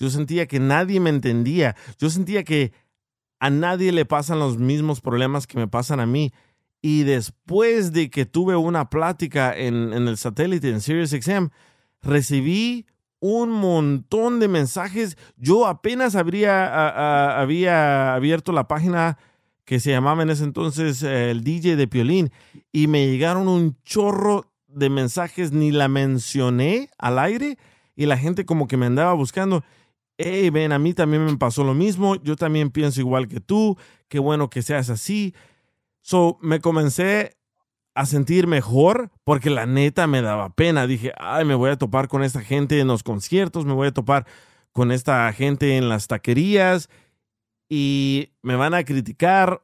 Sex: male